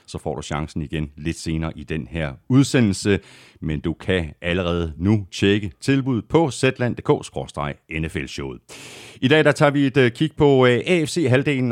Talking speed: 150 wpm